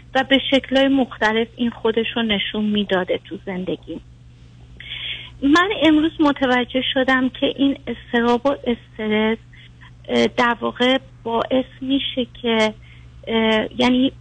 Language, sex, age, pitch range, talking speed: Persian, female, 30-49, 220-260 Hz, 105 wpm